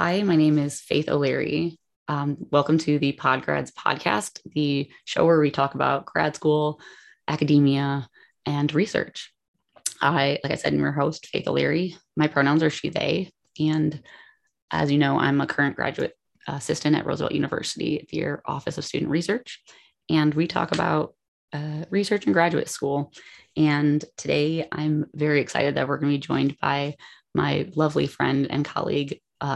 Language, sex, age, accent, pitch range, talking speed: English, female, 20-39, American, 140-155 Hz, 160 wpm